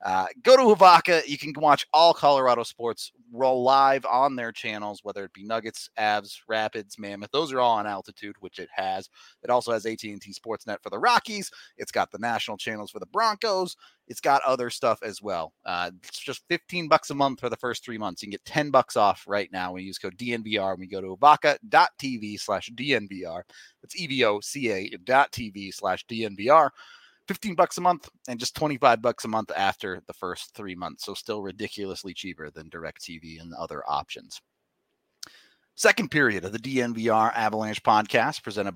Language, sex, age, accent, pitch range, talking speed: English, male, 30-49, American, 105-165 Hz, 190 wpm